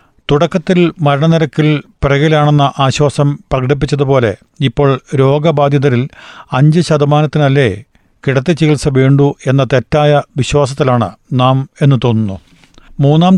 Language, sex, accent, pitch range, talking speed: Malayalam, male, native, 130-150 Hz, 85 wpm